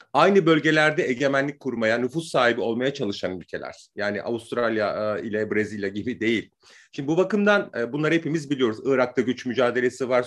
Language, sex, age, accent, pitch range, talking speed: Turkish, male, 40-59, native, 125-205 Hz, 145 wpm